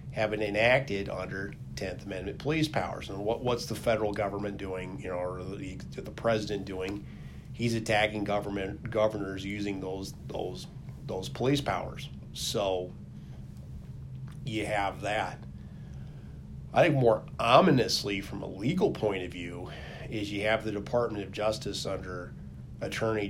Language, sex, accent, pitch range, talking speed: English, male, American, 90-110 Hz, 140 wpm